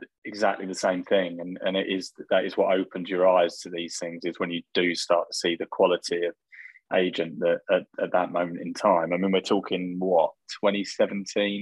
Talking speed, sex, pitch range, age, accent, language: 210 wpm, male, 90-100 Hz, 20-39, British, English